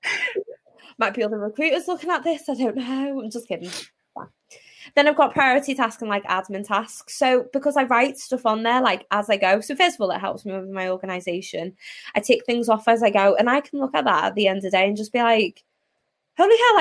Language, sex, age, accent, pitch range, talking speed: English, female, 20-39, British, 200-265 Hz, 250 wpm